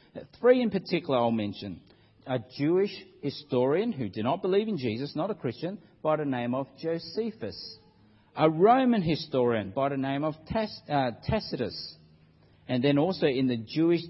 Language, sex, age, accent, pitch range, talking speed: English, male, 50-69, Australian, 125-180 Hz, 155 wpm